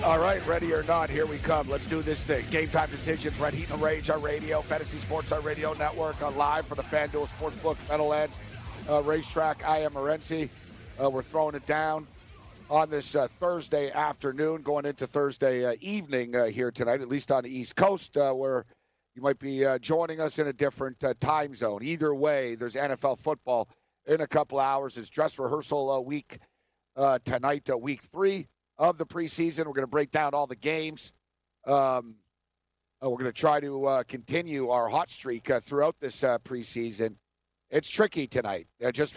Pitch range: 135-160 Hz